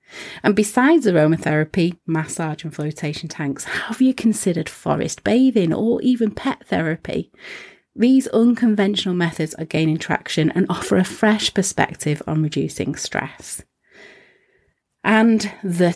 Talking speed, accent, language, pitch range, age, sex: 120 wpm, British, English, 165-225 Hz, 30-49, female